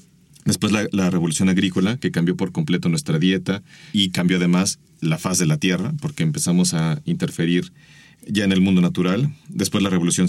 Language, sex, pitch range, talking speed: Spanish, male, 90-140 Hz, 180 wpm